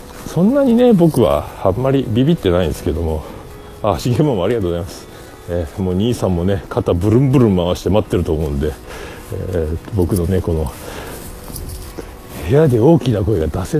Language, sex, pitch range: Japanese, male, 90-140 Hz